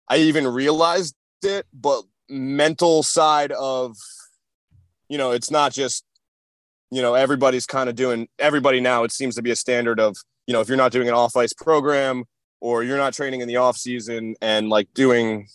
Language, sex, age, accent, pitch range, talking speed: English, male, 20-39, American, 120-135 Hz, 180 wpm